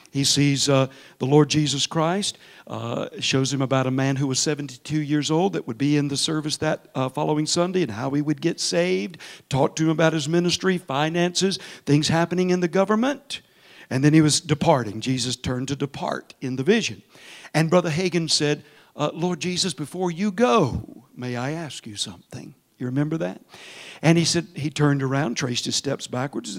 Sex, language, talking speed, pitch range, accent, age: male, English, 195 wpm, 140-190 Hz, American, 60-79